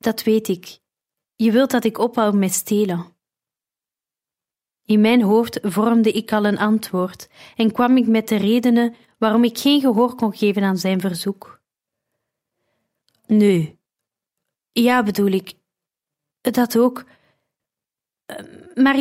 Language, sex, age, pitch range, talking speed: Dutch, female, 30-49, 190-250 Hz, 130 wpm